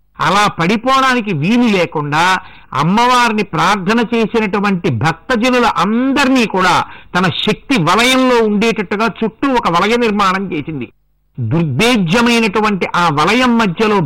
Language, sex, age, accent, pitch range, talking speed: Telugu, male, 60-79, native, 170-235 Hz, 95 wpm